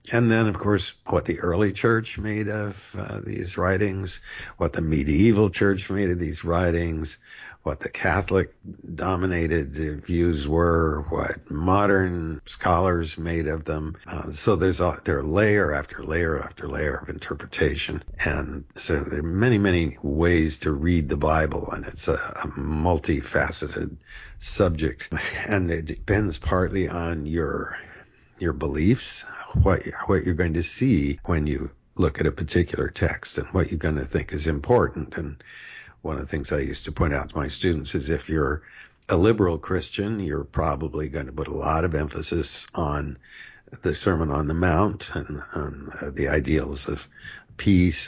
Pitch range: 75-95 Hz